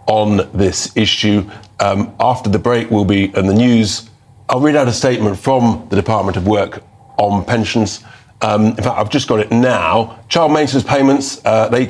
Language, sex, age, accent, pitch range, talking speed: English, male, 40-59, British, 110-135 Hz, 185 wpm